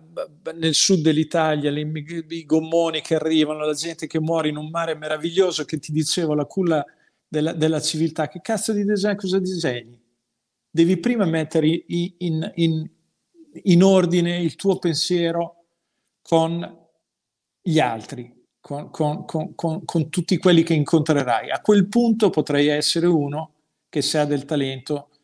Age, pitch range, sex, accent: 50-69, 140-170 Hz, male, native